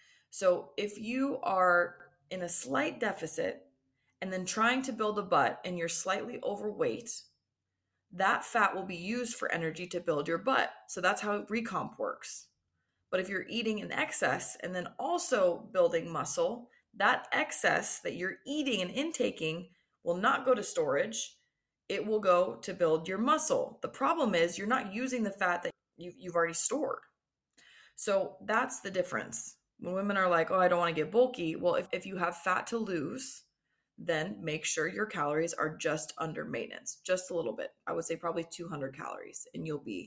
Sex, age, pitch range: female, 20-39, 170-245 Hz